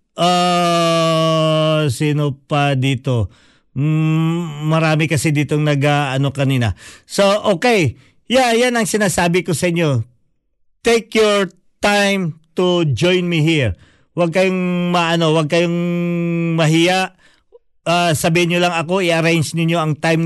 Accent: native